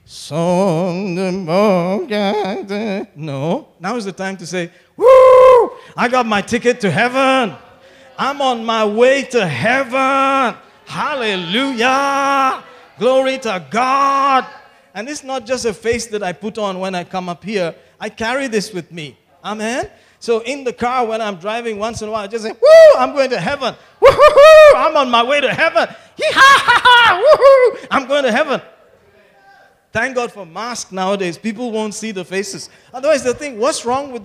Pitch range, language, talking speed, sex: 190-260 Hz, English, 165 wpm, male